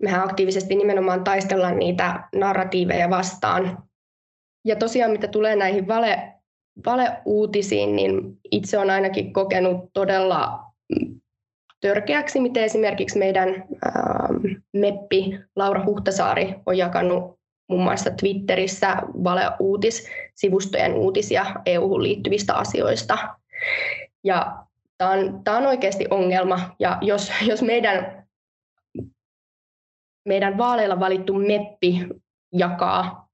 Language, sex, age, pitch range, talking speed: Finnish, female, 20-39, 185-220 Hz, 100 wpm